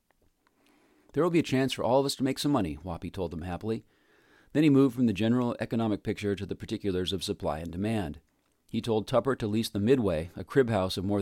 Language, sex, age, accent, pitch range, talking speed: English, male, 40-59, American, 95-115 Hz, 235 wpm